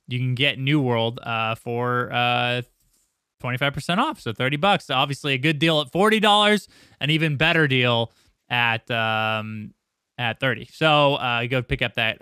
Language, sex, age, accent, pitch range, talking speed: English, male, 20-39, American, 120-160 Hz, 180 wpm